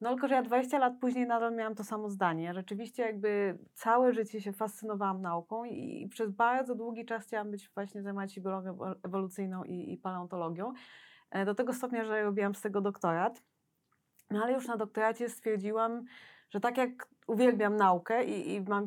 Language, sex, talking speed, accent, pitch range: Polish, female, 170 wpm, native, 195-240 Hz